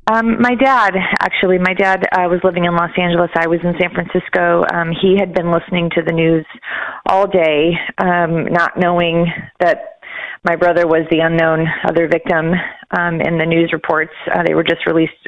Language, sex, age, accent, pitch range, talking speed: English, female, 30-49, American, 165-185 Hz, 190 wpm